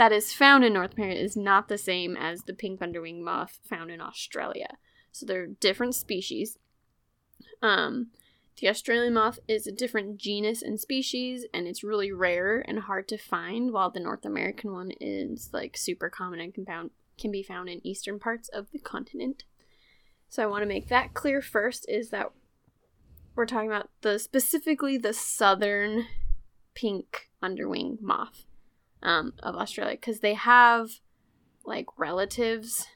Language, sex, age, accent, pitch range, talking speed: English, female, 10-29, American, 195-240 Hz, 160 wpm